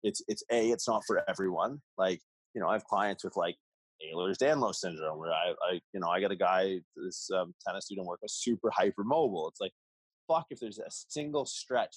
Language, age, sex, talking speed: English, 20-39, male, 215 wpm